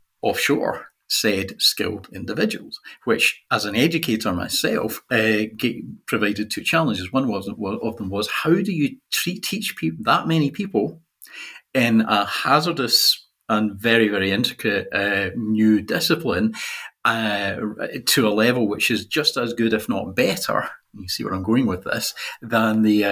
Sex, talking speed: male, 145 wpm